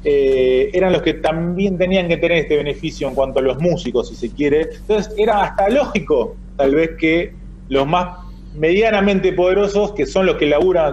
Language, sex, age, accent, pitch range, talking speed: Spanish, male, 30-49, Argentinian, 135-190 Hz, 185 wpm